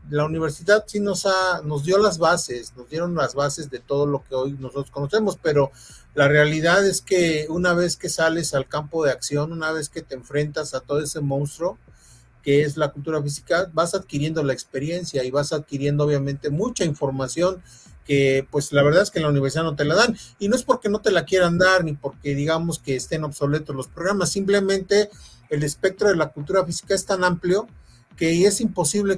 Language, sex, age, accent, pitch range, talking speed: Spanish, male, 40-59, Mexican, 140-175 Hz, 205 wpm